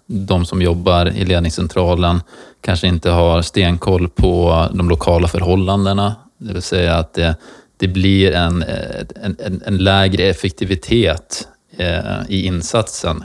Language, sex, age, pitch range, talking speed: Swedish, male, 20-39, 85-95 Hz, 120 wpm